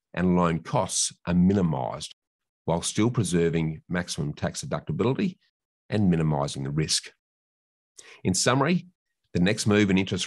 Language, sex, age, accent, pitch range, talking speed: English, male, 50-69, Australian, 85-105 Hz, 130 wpm